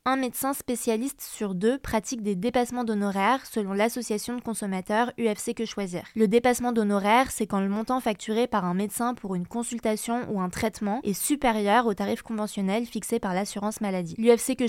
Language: French